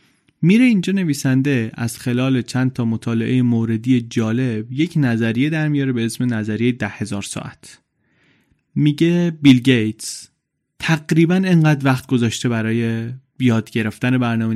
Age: 30-49